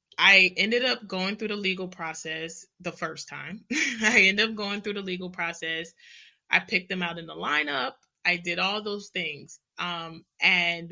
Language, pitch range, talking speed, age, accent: English, 175-205 Hz, 180 wpm, 20-39, American